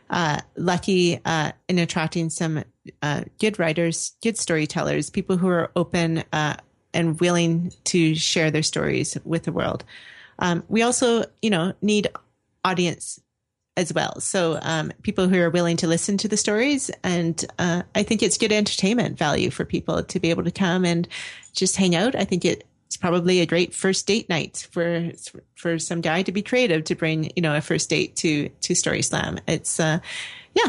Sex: female